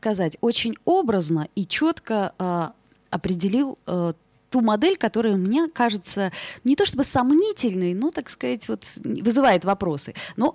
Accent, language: native, Russian